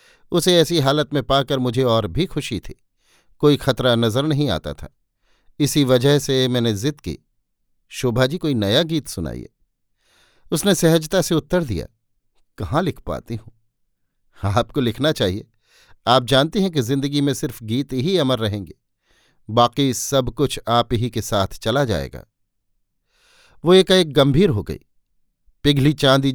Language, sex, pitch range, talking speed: Hindi, male, 115-155 Hz, 155 wpm